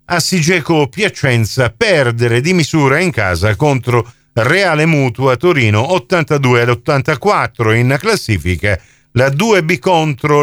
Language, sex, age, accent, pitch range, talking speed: Italian, male, 50-69, native, 125-185 Hz, 100 wpm